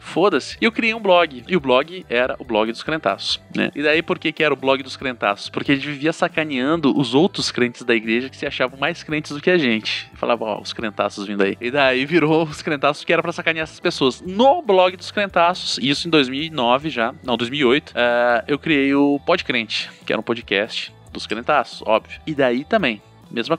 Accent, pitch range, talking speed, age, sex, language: Brazilian, 135-185 Hz, 220 wpm, 20-39, male, Portuguese